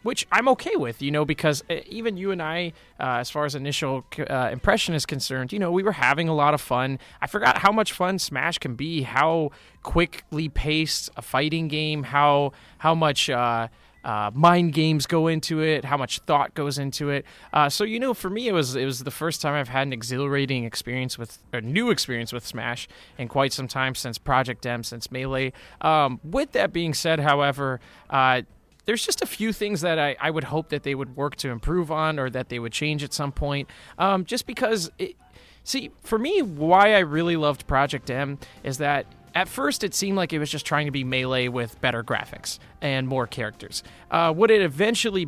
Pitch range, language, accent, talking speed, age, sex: 130-175 Hz, English, American, 210 wpm, 20-39, male